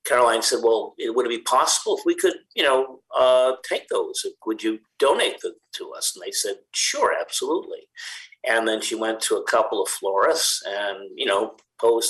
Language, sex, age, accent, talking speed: English, male, 50-69, American, 195 wpm